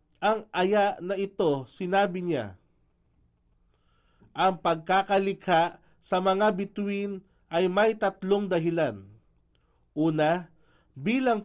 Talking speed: 90 wpm